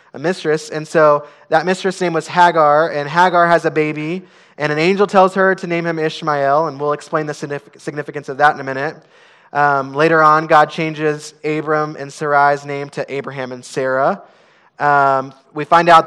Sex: male